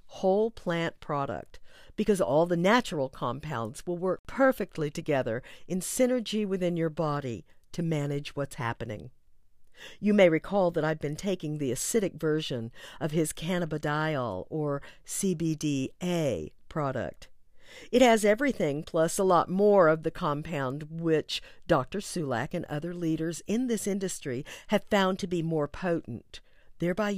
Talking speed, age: 140 wpm, 50-69